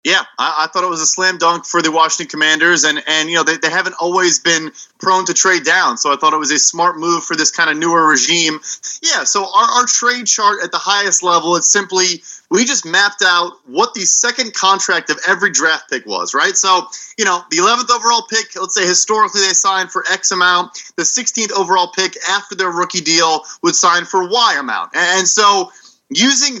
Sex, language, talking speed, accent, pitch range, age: male, English, 220 wpm, American, 170-220 Hz, 30-49